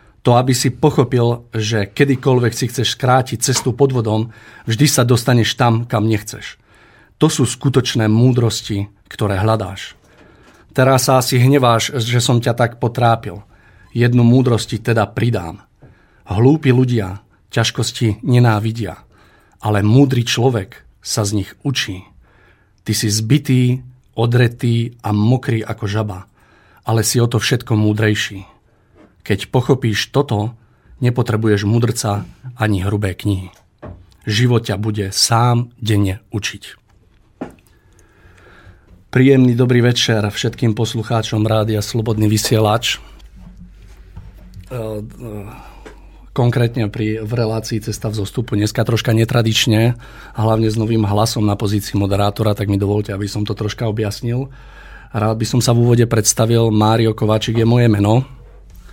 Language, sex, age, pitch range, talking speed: Slovak, male, 40-59, 105-120 Hz, 125 wpm